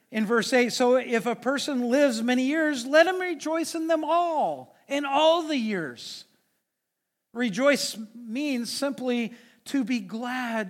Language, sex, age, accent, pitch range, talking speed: English, male, 40-59, American, 205-260 Hz, 145 wpm